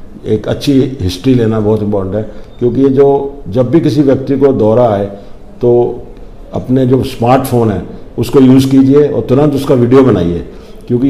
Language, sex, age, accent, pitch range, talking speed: Hindi, male, 50-69, native, 110-135 Hz, 170 wpm